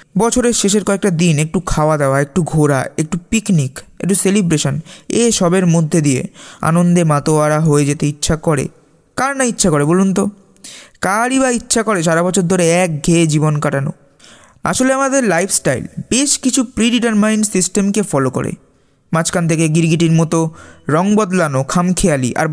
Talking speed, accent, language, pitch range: 130 wpm, native, Bengali, 165-215 Hz